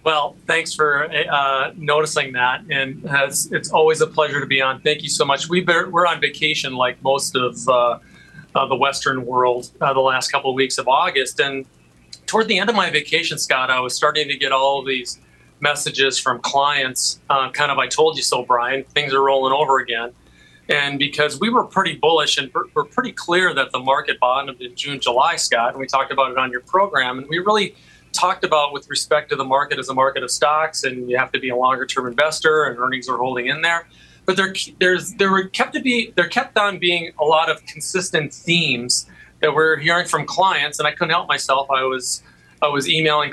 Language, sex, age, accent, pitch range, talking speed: English, male, 40-59, American, 130-165 Hz, 220 wpm